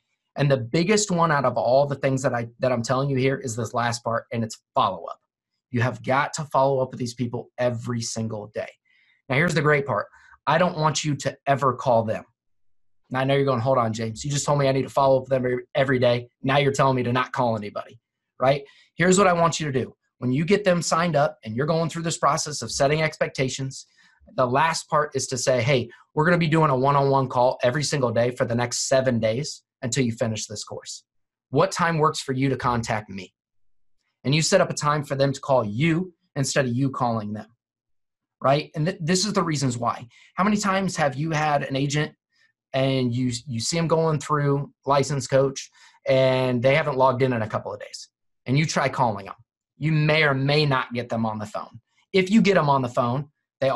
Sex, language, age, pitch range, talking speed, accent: male, English, 30-49, 125-155 Hz, 235 wpm, American